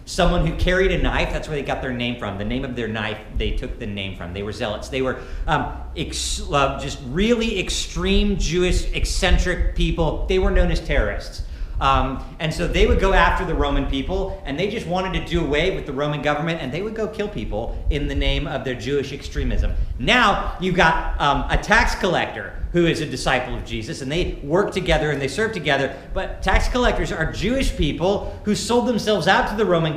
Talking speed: 215 wpm